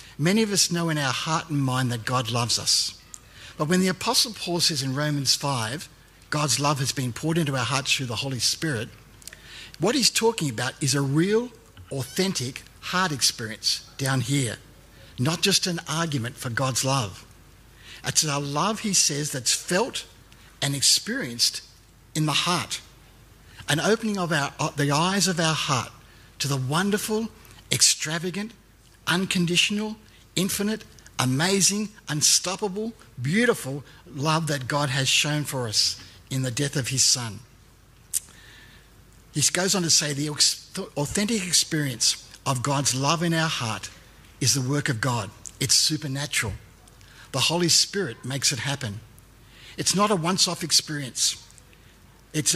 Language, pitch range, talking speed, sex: English, 120-170 Hz, 145 wpm, male